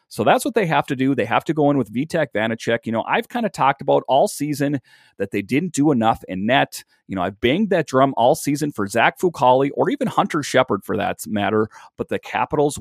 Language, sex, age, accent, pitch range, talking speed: English, male, 40-59, American, 115-155 Hz, 245 wpm